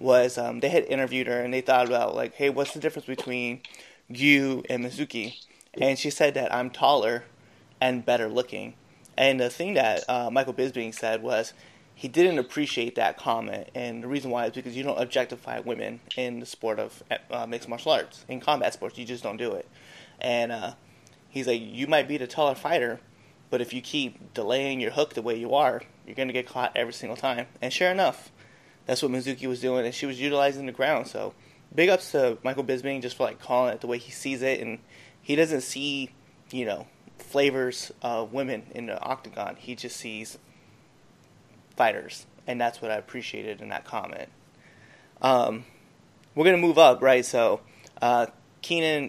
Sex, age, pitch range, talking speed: male, 20-39, 120-140 Hz, 195 wpm